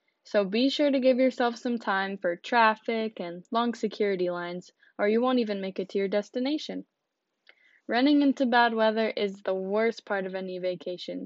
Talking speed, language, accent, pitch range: 180 wpm, English, American, 195-240 Hz